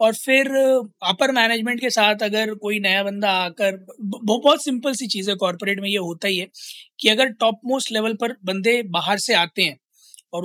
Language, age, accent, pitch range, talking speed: Hindi, 20-39, native, 185-225 Hz, 195 wpm